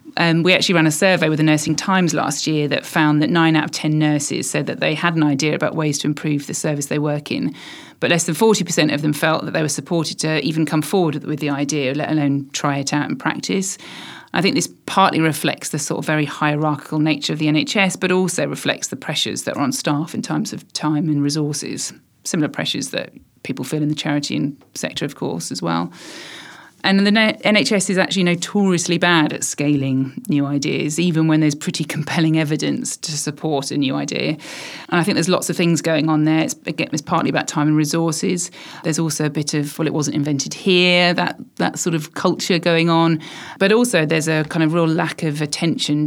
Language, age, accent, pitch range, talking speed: English, 40-59, British, 150-170 Hz, 220 wpm